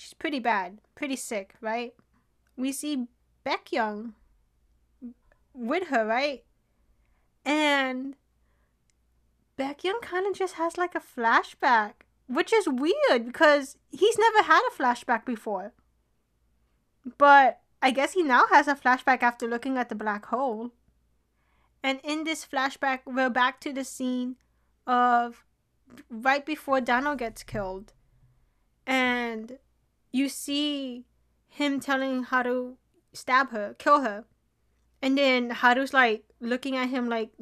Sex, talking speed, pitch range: female, 130 wpm, 240-300 Hz